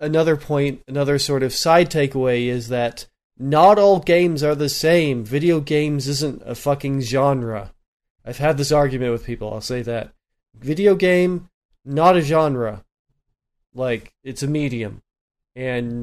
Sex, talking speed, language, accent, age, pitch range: male, 150 wpm, English, American, 30-49, 120-145 Hz